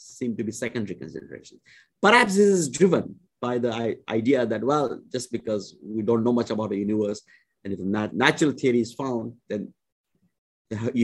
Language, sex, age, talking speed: English, male, 50-69, 170 wpm